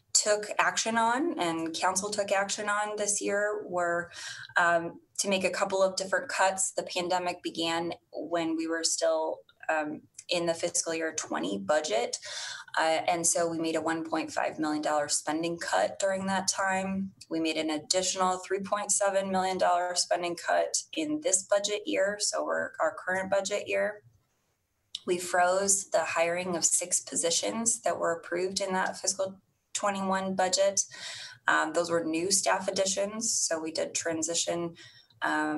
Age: 20-39